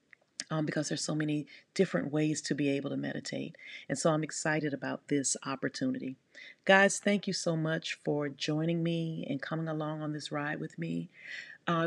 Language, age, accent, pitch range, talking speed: English, 40-59, American, 145-170 Hz, 180 wpm